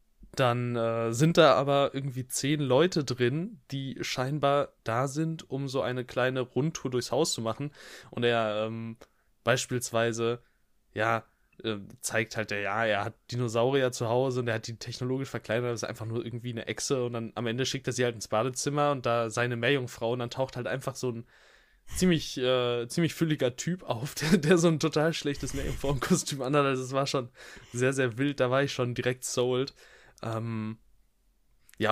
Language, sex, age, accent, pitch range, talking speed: German, male, 10-29, German, 115-140 Hz, 185 wpm